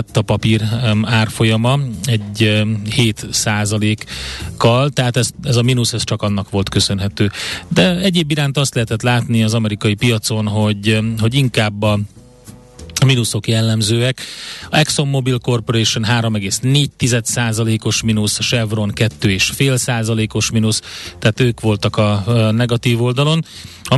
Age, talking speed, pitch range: 30-49, 125 wpm, 105-120 Hz